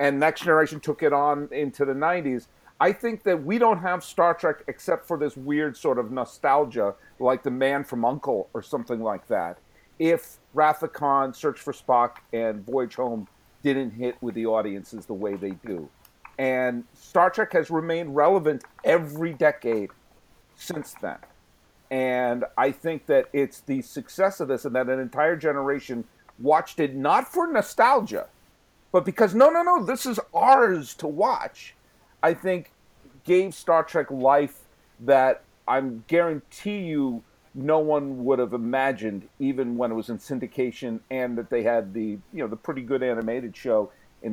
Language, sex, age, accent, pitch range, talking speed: English, male, 50-69, American, 120-160 Hz, 165 wpm